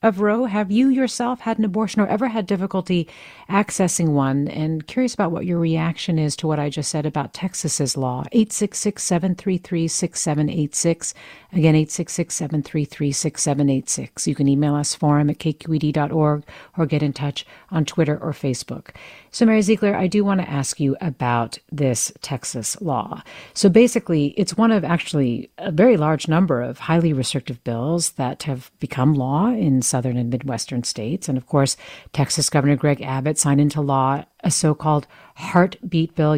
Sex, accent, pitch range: female, American, 145-200 Hz